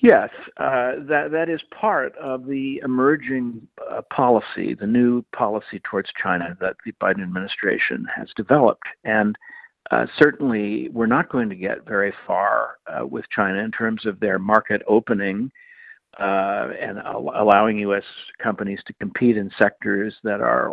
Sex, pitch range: male, 105-135 Hz